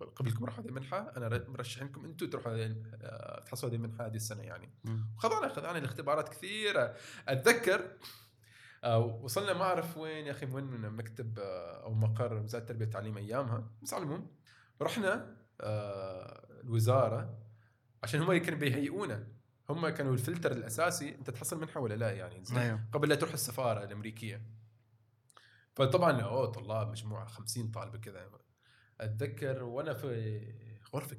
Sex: male